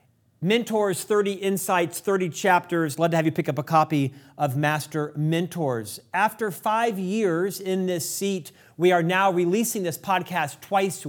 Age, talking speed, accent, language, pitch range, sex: 40-59, 155 wpm, American, English, 150-180 Hz, male